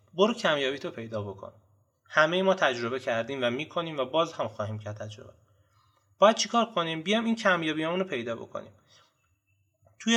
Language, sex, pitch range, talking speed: Persian, male, 110-170 Hz, 155 wpm